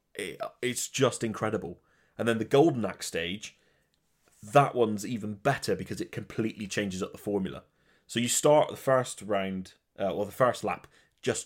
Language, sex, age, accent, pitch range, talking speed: English, male, 30-49, British, 95-125 Hz, 170 wpm